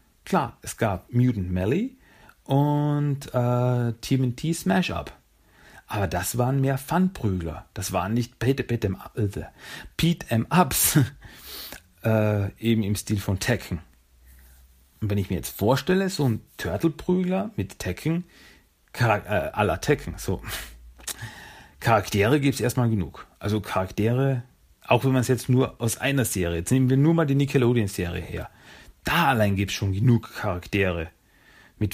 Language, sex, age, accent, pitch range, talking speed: German, male, 40-59, German, 95-135 Hz, 140 wpm